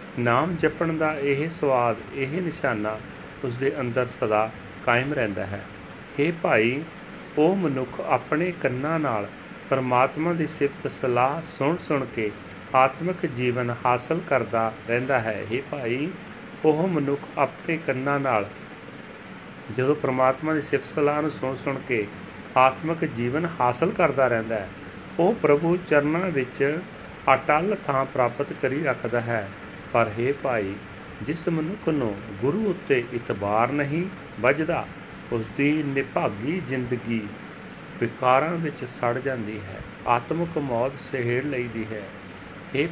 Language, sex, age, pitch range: Punjabi, male, 40-59, 120-155 Hz